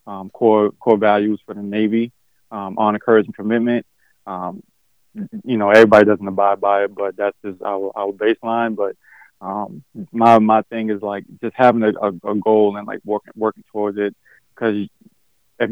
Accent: American